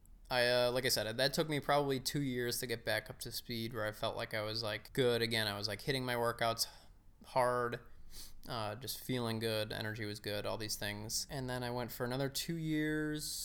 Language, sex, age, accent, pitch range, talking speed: English, male, 20-39, American, 110-135 Hz, 230 wpm